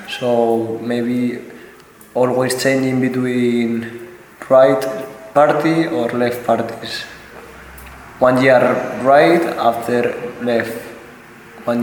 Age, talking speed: 20-39, 80 wpm